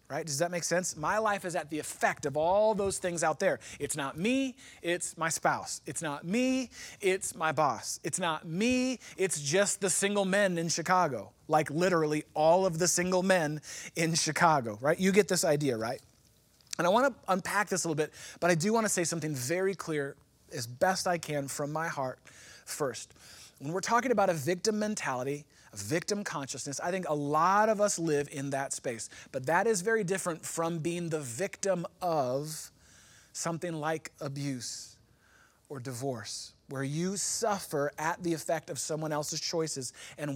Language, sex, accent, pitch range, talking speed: English, male, American, 145-185 Hz, 185 wpm